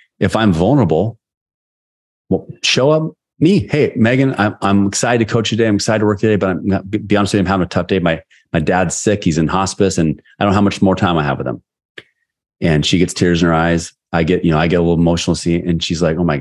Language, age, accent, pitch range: English, 30-49, American, 85-105 Hz